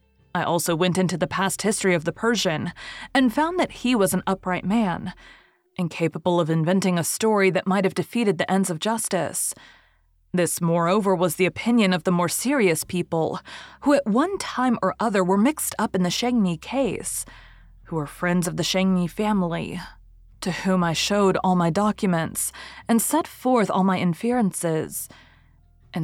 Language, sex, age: English, female, 30-49